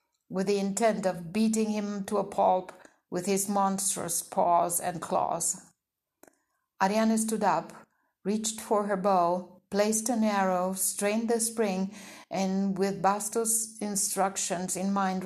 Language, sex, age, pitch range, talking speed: English, female, 60-79, 180-205 Hz, 135 wpm